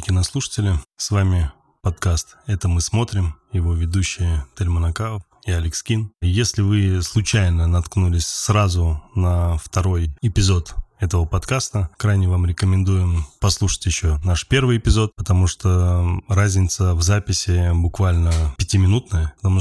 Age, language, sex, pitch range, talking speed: 20-39, Russian, male, 90-105 Hz, 120 wpm